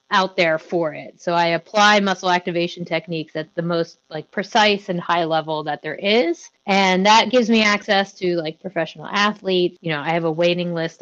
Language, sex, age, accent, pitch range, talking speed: English, female, 30-49, American, 170-200 Hz, 200 wpm